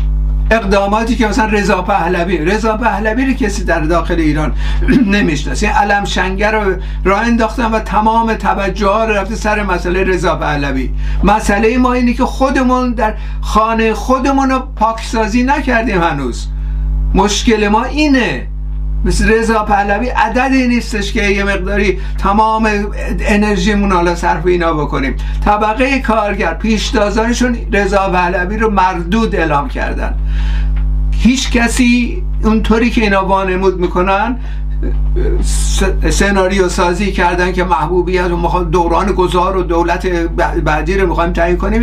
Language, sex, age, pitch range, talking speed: Persian, male, 60-79, 175-220 Hz, 125 wpm